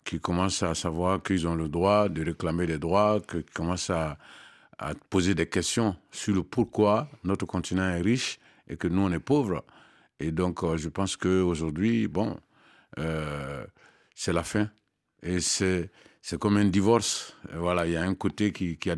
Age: 50-69